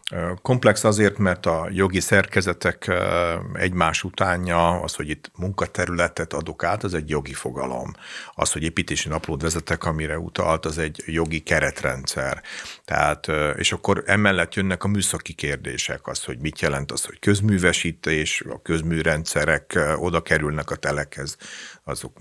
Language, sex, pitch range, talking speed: Hungarian, male, 80-95 Hz, 130 wpm